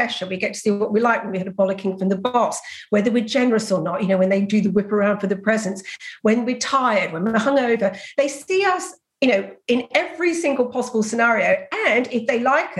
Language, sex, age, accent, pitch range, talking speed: English, female, 50-69, British, 200-260 Hz, 240 wpm